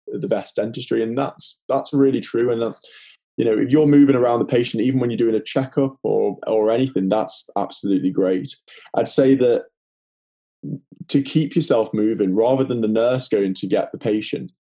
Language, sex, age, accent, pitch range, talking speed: English, male, 20-39, British, 105-140 Hz, 190 wpm